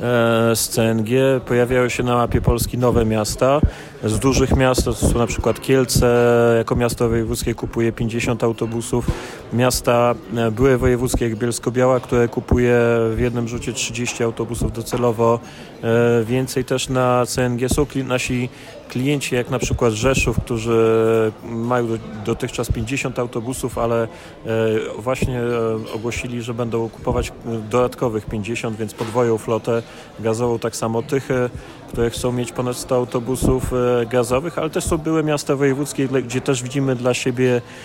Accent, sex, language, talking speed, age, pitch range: native, male, Polish, 135 wpm, 30-49, 115-125 Hz